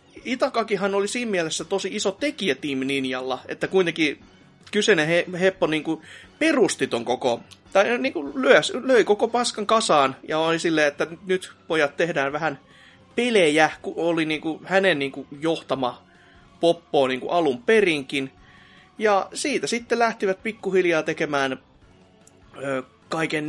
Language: Finnish